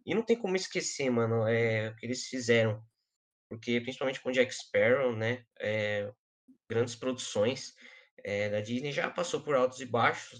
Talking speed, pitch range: 150 wpm, 115-130 Hz